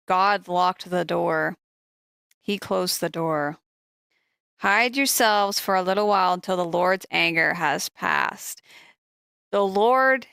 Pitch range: 170-210 Hz